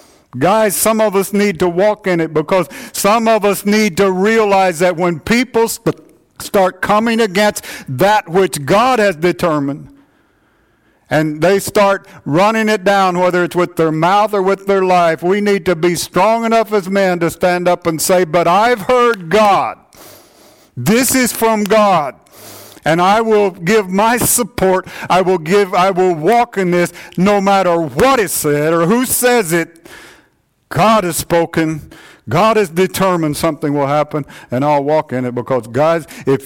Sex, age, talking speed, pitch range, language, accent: male, 50-69, 170 wpm, 150-200 Hz, English, American